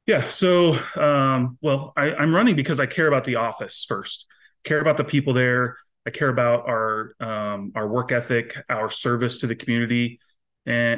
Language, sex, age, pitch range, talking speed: English, male, 30-49, 115-140 Hz, 185 wpm